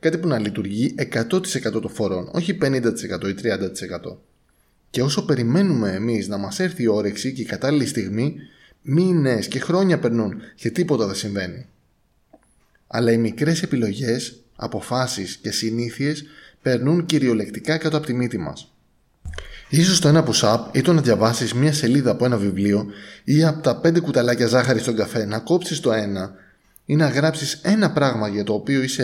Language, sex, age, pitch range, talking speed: Greek, male, 20-39, 110-145 Hz, 165 wpm